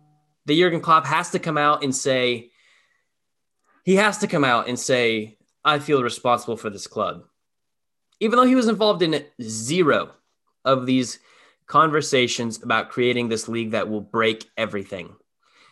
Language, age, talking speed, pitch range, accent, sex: English, 10-29, 155 wpm, 110-150 Hz, American, male